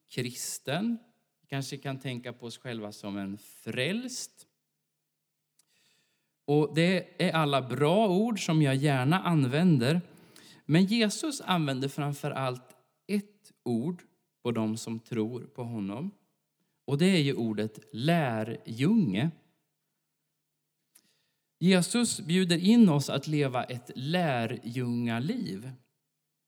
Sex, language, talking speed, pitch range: male, Swedish, 105 wpm, 125-180 Hz